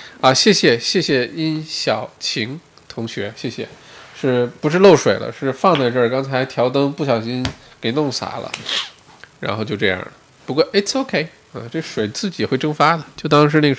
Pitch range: 115-165 Hz